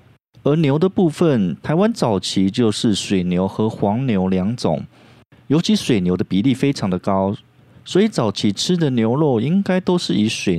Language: Chinese